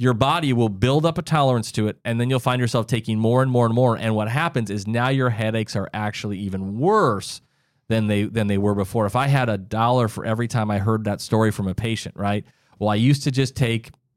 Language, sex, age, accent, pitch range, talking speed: English, male, 30-49, American, 100-125 Hz, 250 wpm